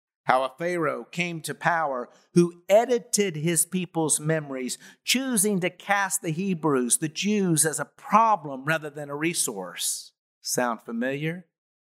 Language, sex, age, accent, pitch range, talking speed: English, male, 50-69, American, 145-190 Hz, 135 wpm